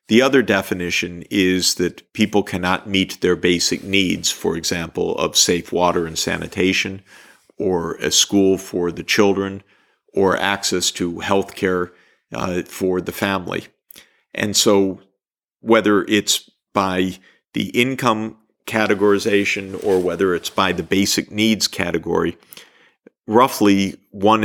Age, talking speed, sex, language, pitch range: 50-69, 125 wpm, male, German, 90-105 Hz